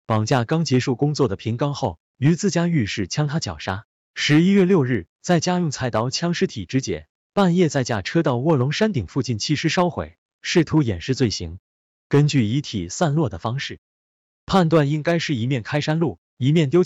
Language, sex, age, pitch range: Chinese, male, 20-39, 105-155 Hz